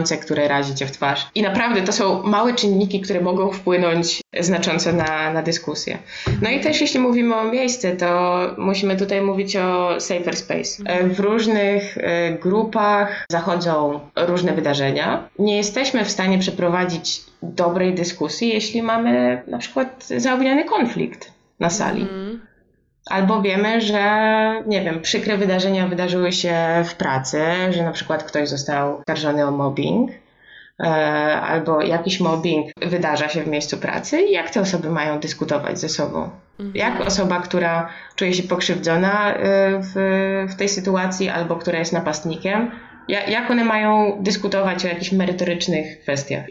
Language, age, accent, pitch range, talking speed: Polish, 20-39, native, 165-205 Hz, 140 wpm